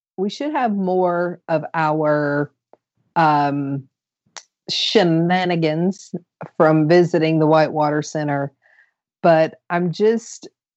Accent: American